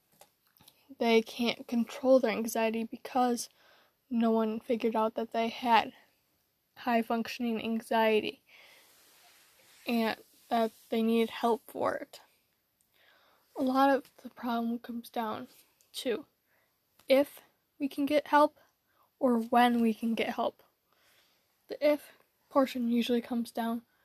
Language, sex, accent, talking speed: English, female, American, 120 wpm